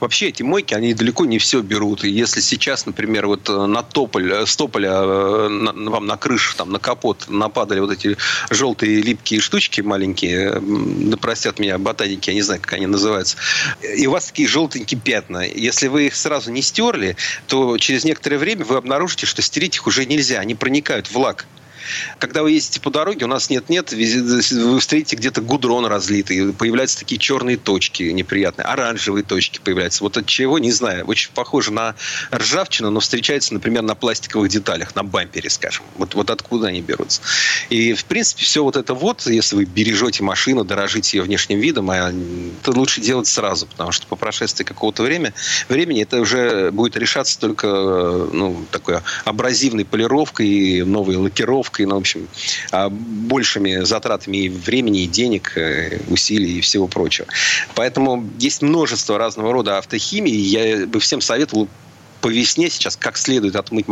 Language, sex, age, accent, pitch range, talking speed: Russian, male, 40-59, native, 100-130 Hz, 165 wpm